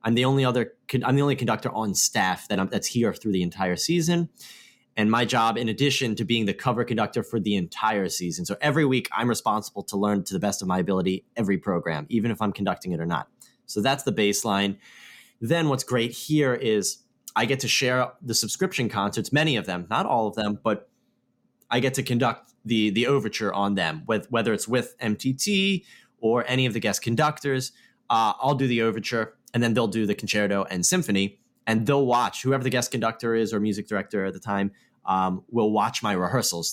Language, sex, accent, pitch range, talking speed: English, male, American, 105-125 Hz, 210 wpm